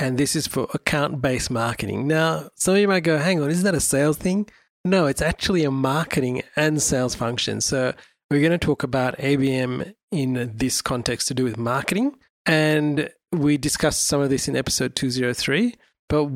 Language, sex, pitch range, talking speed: English, male, 130-160 Hz, 185 wpm